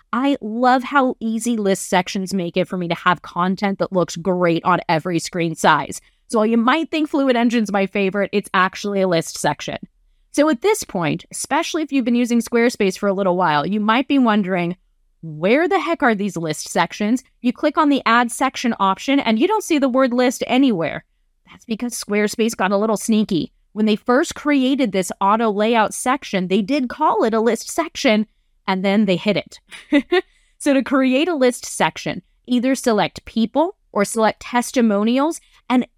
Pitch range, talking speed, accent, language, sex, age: 195-270 Hz, 190 wpm, American, English, female, 30-49